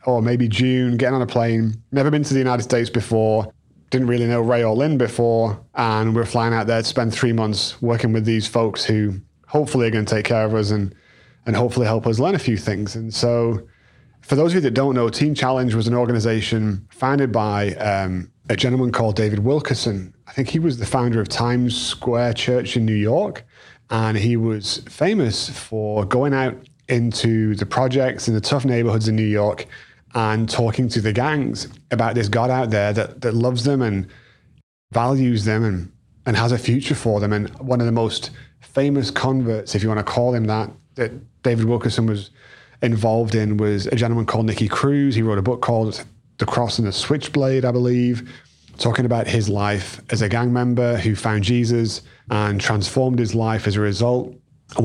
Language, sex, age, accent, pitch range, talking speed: English, male, 30-49, British, 110-125 Hz, 200 wpm